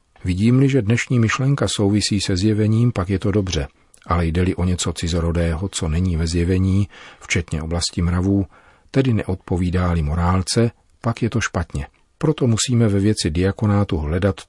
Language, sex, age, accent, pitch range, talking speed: Czech, male, 40-59, native, 85-100 Hz, 150 wpm